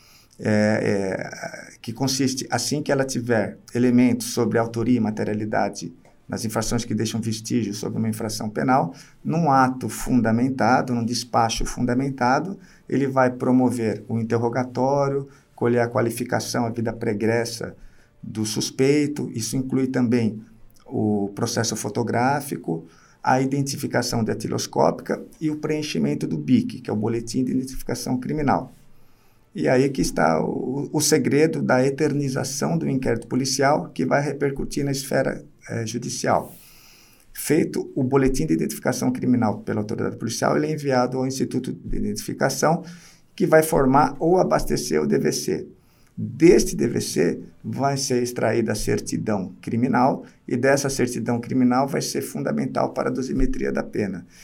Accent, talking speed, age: Brazilian, 135 wpm, 50-69